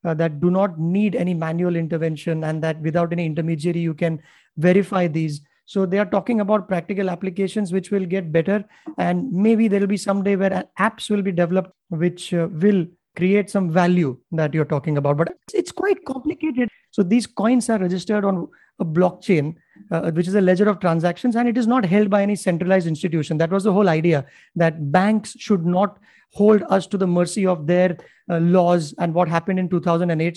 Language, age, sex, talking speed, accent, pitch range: English, 30-49, male, 200 wpm, Indian, 170-210 Hz